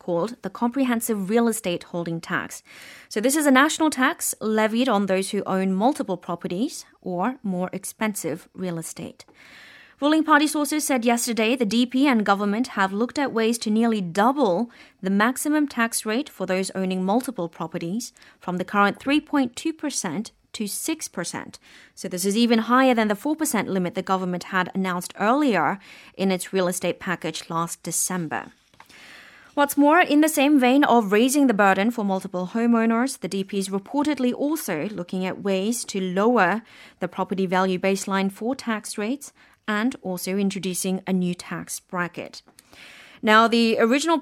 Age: 30-49